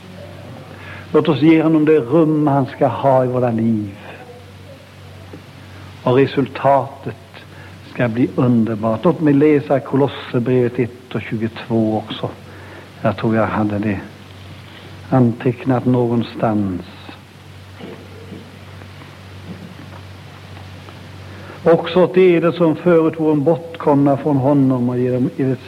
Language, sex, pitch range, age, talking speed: English, male, 105-140 Hz, 60-79, 105 wpm